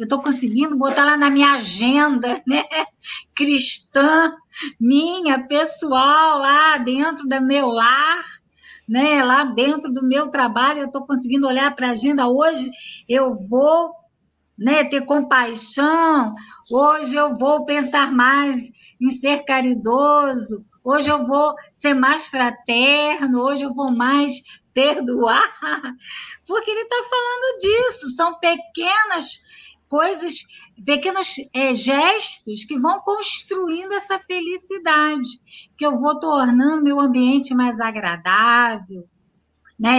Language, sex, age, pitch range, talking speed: Portuguese, female, 20-39, 245-305 Hz, 120 wpm